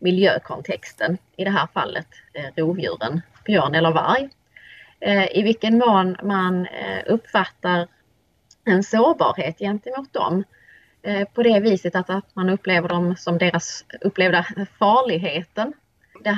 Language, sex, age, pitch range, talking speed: Swedish, female, 20-39, 185-225 Hz, 110 wpm